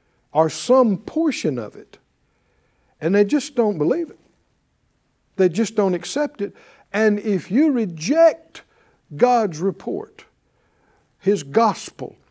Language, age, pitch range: English, 60-79, 150-220 Hz